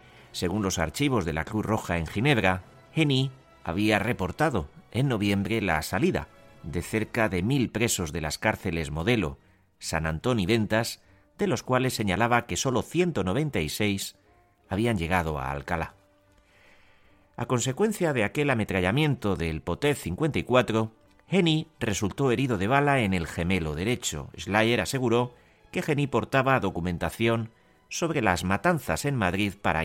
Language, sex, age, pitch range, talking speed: Spanish, male, 40-59, 85-125 Hz, 140 wpm